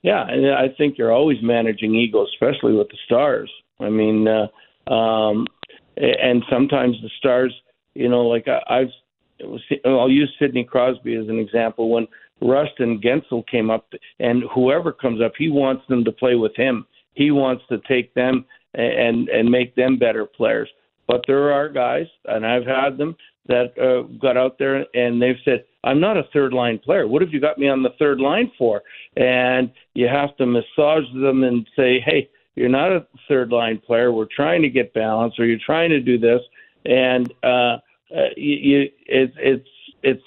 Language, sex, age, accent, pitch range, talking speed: English, male, 50-69, American, 120-140 Hz, 190 wpm